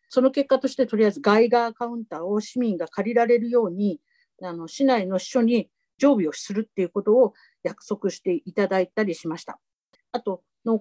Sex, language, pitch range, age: female, Japanese, 185-270 Hz, 50-69